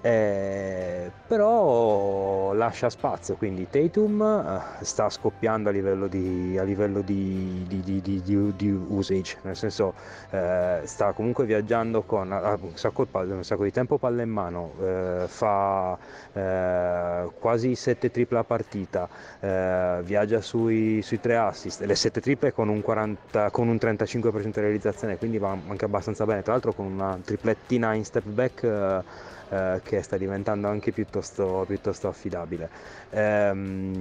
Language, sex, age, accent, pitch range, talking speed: Italian, male, 30-49, native, 95-115 Hz, 140 wpm